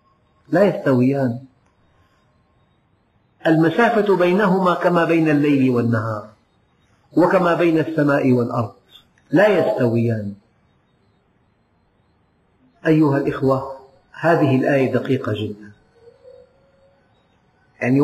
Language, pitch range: Arabic, 120-160 Hz